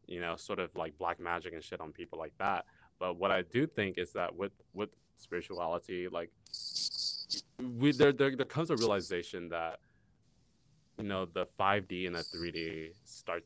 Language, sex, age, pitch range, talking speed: English, male, 20-39, 85-105 Hz, 180 wpm